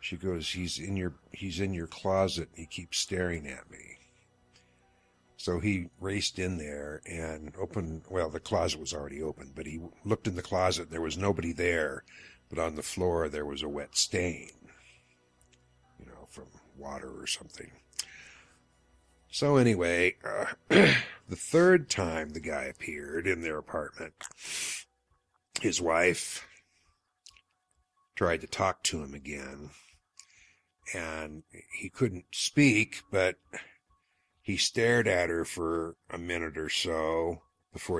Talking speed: 140 wpm